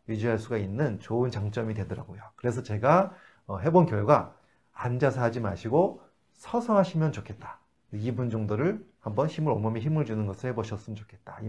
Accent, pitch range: native, 110-160 Hz